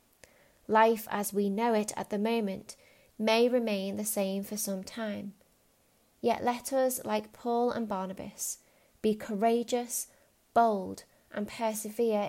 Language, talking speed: English, 130 wpm